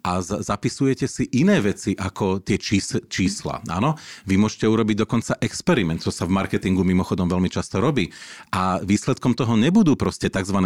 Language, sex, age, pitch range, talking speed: Slovak, male, 40-59, 95-110 Hz, 160 wpm